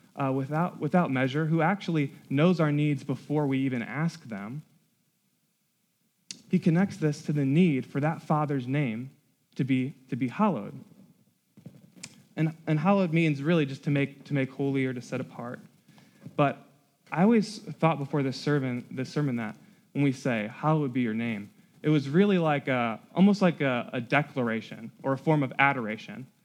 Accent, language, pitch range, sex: American, English, 135-180 Hz, male